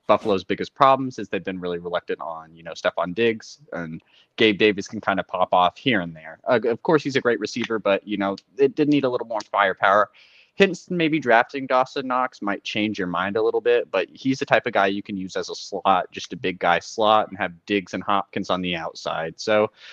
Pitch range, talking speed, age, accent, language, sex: 90-115 Hz, 240 wpm, 20-39, American, English, male